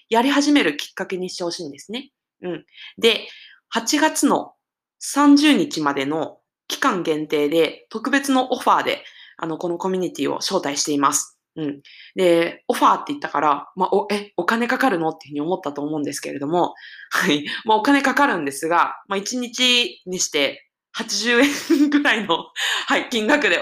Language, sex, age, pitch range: Japanese, female, 20-39, 175-265 Hz